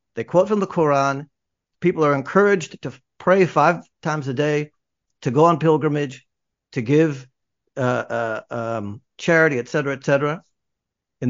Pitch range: 135-170 Hz